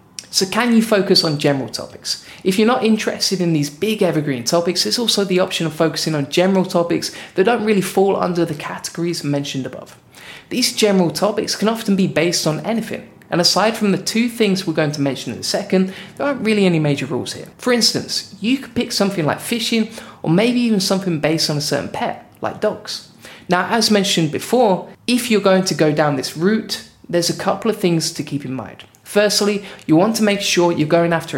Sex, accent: male, British